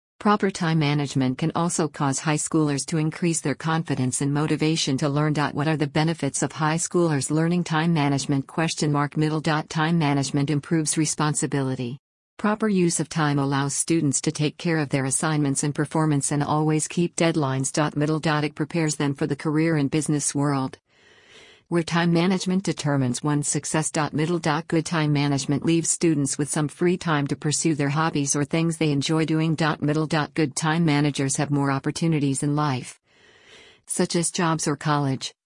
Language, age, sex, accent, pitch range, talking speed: English, 50-69, female, American, 145-185 Hz, 165 wpm